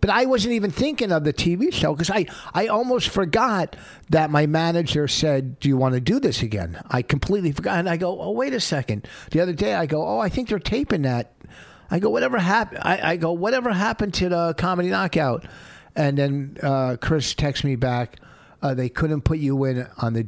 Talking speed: 205 wpm